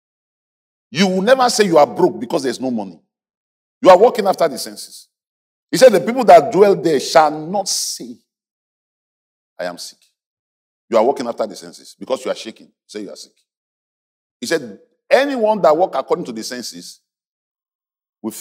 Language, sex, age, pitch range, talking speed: English, male, 50-69, 165-265 Hz, 175 wpm